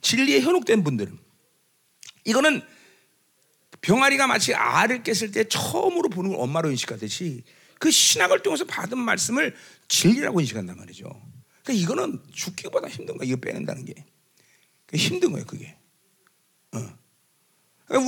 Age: 40-59